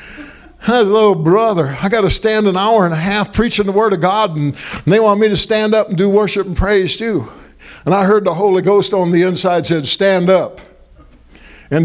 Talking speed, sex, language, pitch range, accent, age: 230 wpm, male, English, 140-195 Hz, American, 60-79